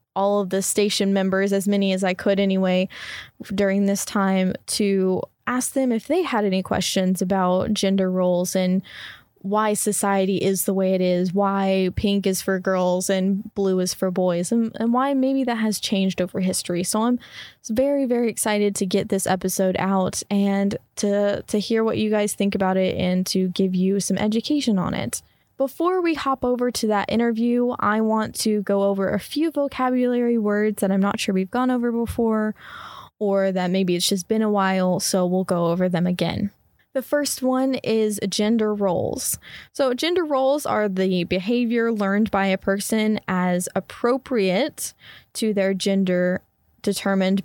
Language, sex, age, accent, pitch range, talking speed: English, female, 10-29, American, 190-225 Hz, 175 wpm